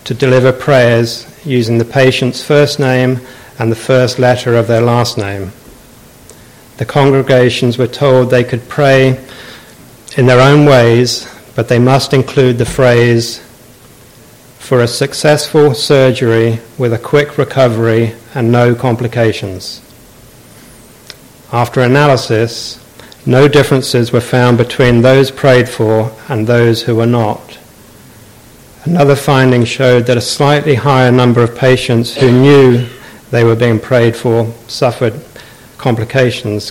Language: English